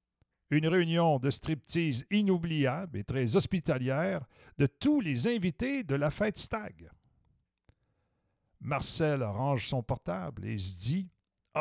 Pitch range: 115-175 Hz